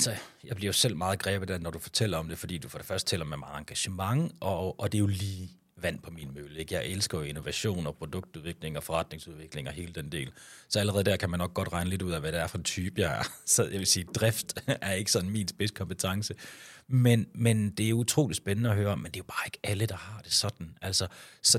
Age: 30-49